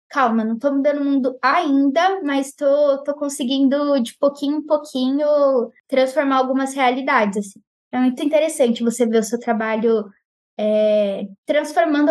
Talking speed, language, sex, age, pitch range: 130 wpm, Portuguese, female, 20-39, 245-290 Hz